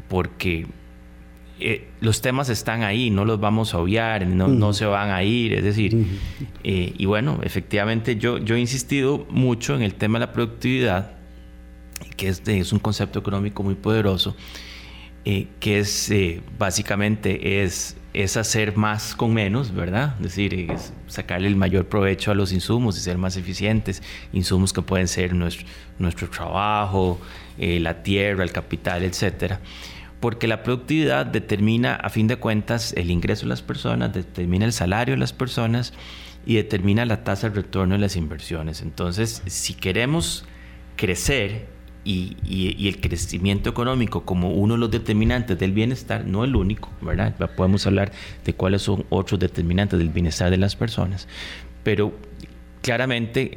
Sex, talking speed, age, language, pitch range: male, 160 wpm, 30-49, Spanish, 90-110 Hz